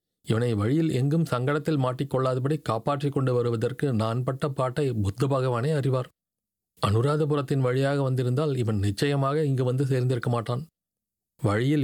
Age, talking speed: 40-59, 120 wpm